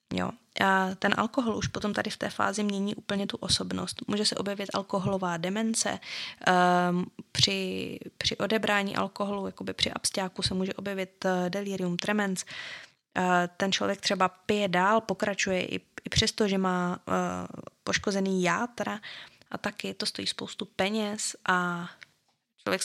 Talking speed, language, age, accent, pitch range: 145 wpm, Czech, 20-39, native, 180-205 Hz